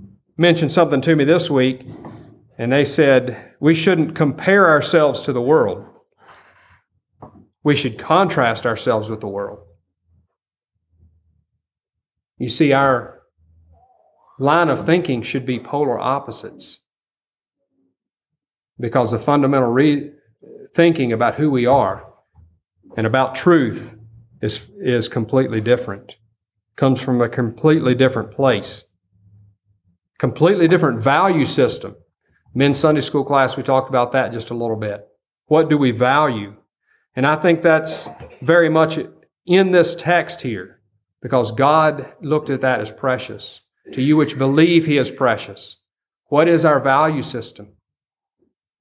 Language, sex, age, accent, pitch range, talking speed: English, male, 40-59, American, 110-150 Hz, 130 wpm